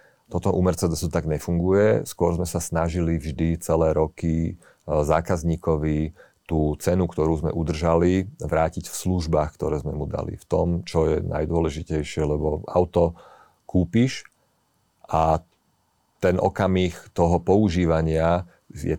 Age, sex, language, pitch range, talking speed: 40-59, male, Slovak, 80-90 Hz, 125 wpm